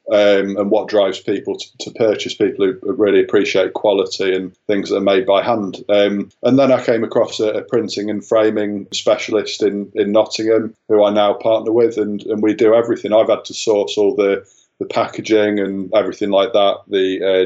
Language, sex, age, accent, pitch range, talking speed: English, male, 20-39, British, 100-125 Hz, 205 wpm